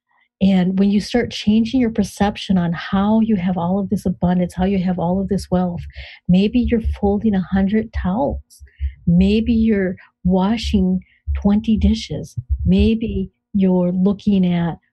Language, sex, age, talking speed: English, female, 40-59, 145 wpm